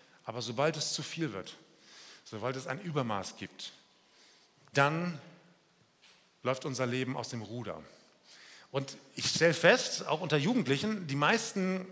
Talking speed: 135 wpm